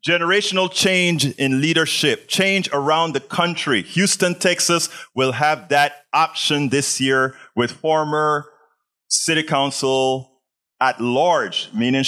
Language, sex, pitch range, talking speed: English, male, 130-180 Hz, 115 wpm